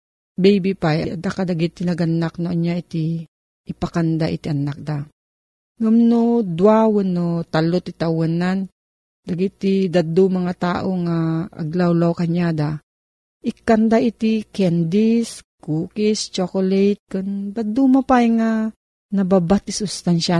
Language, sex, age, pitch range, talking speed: Filipino, female, 40-59, 165-215 Hz, 105 wpm